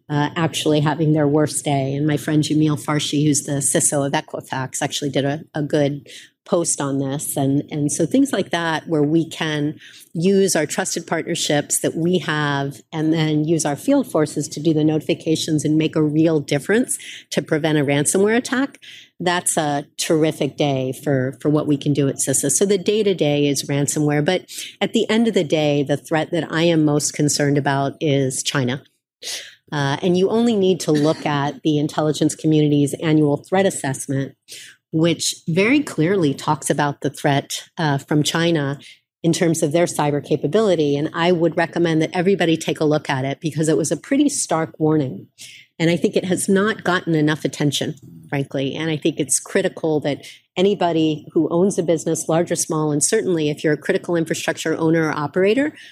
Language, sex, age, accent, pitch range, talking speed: English, female, 40-59, American, 145-170 Hz, 190 wpm